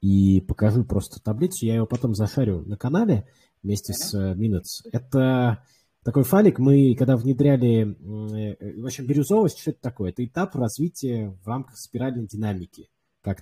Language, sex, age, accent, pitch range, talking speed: Russian, male, 20-39, native, 100-130 Hz, 150 wpm